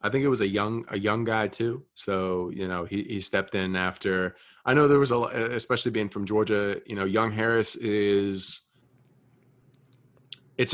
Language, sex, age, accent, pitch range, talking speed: English, male, 30-49, American, 95-115 Hz, 190 wpm